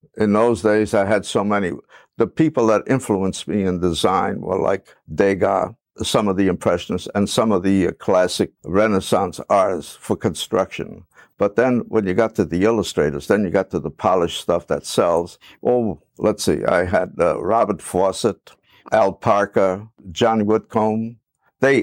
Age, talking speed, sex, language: 60-79, 170 wpm, male, English